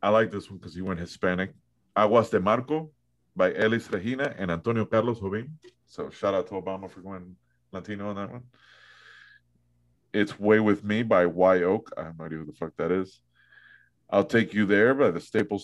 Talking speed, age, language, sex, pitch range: 195 wpm, 30-49, English, male, 80-105 Hz